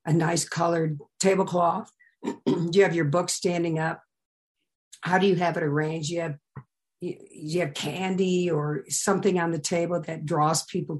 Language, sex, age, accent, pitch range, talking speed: English, female, 50-69, American, 150-190 Hz, 170 wpm